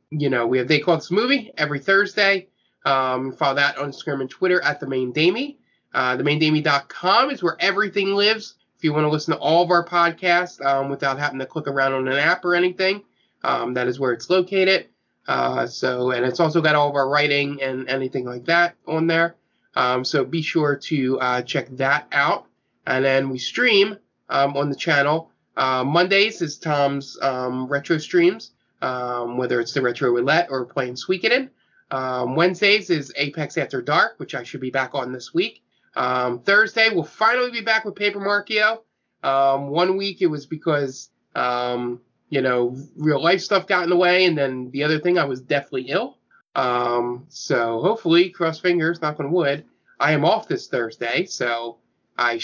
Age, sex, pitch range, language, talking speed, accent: 20-39, male, 130-175 Hz, English, 190 wpm, American